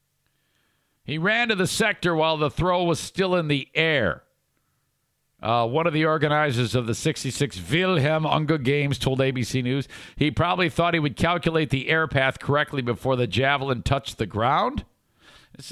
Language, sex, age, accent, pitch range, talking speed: English, male, 50-69, American, 115-160 Hz, 170 wpm